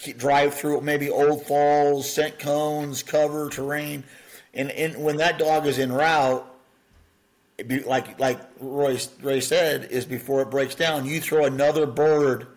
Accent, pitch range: American, 125-150 Hz